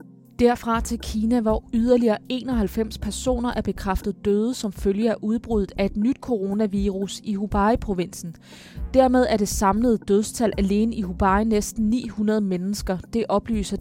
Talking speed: 150 wpm